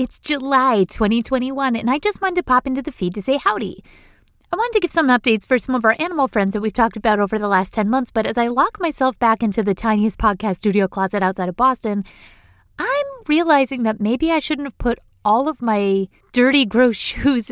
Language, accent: English, American